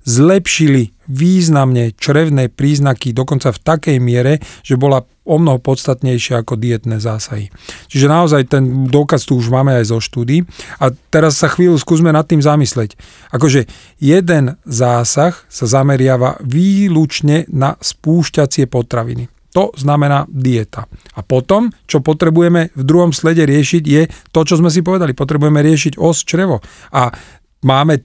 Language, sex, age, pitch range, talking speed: Slovak, male, 40-59, 130-160 Hz, 140 wpm